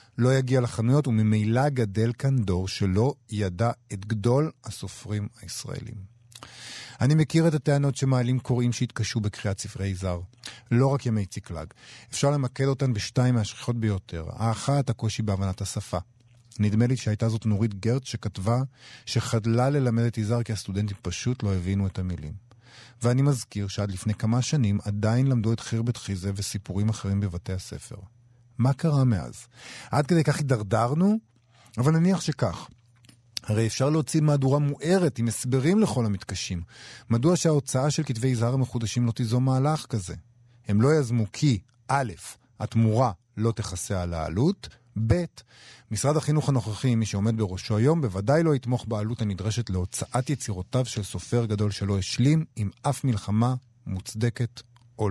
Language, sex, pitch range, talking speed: Hebrew, male, 105-130 Hz, 145 wpm